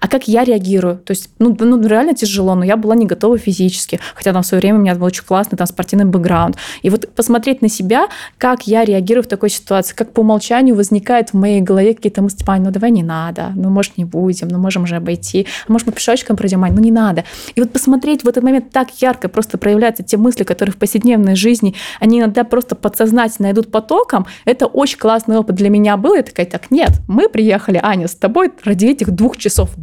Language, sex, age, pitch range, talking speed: Russian, female, 20-39, 190-235 Hz, 230 wpm